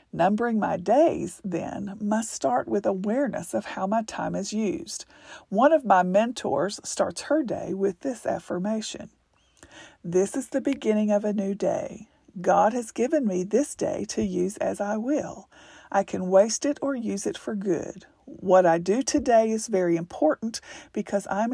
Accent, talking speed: American, 170 wpm